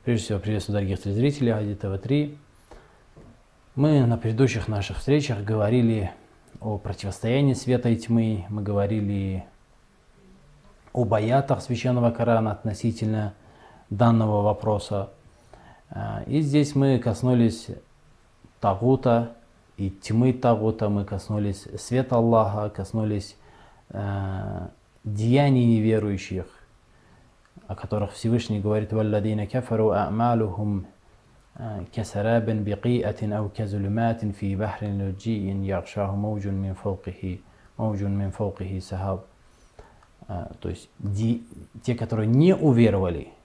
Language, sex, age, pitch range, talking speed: Russian, male, 20-39, 100-115 Hz, 70 wpm